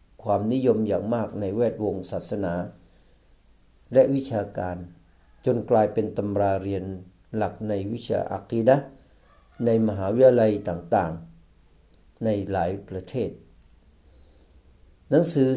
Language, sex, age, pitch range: Thai, male, 60-79, 90-130 Hz